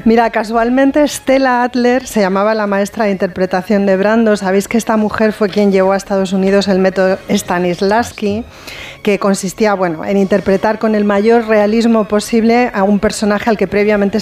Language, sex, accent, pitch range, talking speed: Spanish, female, Spanish, 190-230 Hz, 170 wpm